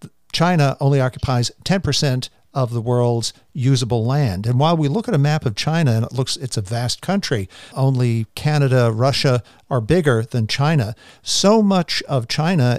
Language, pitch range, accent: English, 120-150 Hz, American